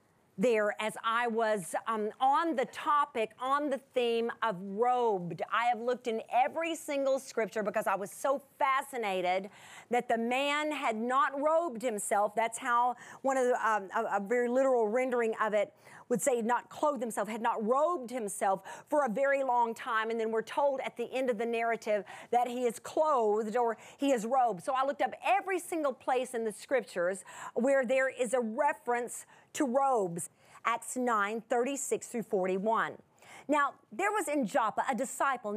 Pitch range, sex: 225-290 Hz, female